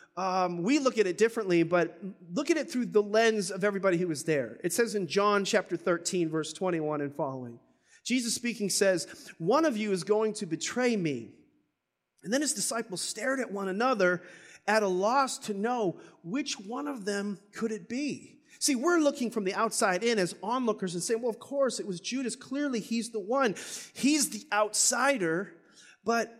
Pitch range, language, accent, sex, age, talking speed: 175-235 Hz, English, American, male, 30-49, 190 wpm